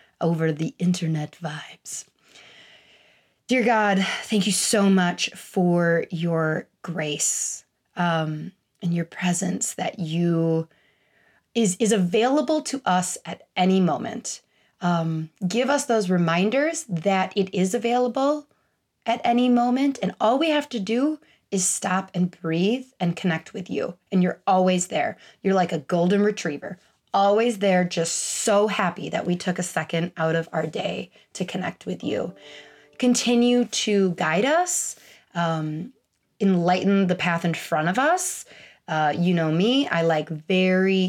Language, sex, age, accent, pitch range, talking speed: English, female, 30-49, American, 175-220 Hz, 145 wpm